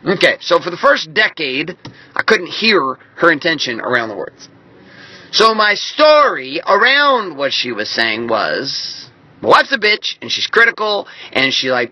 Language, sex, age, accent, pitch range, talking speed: English, male, 30-49, American, 125-205 Hz, 170 wpm